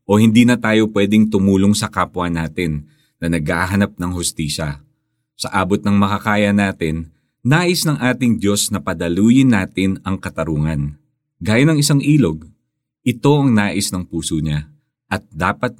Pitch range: 85-125 Hz